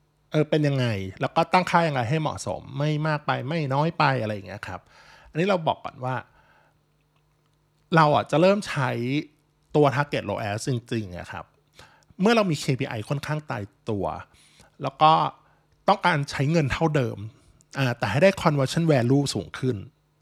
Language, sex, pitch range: Thai, male, 120-155 Hz